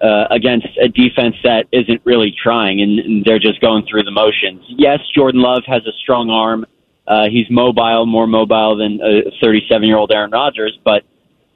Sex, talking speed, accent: male, 190 wpm, American